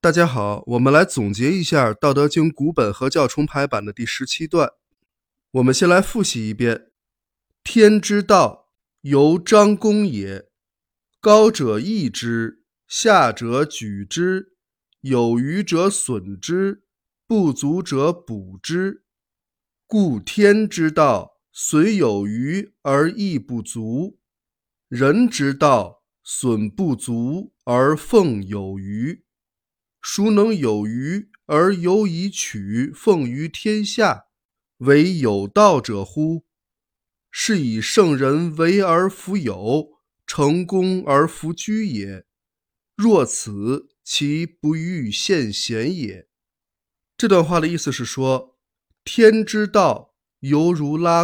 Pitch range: 120-185 Hz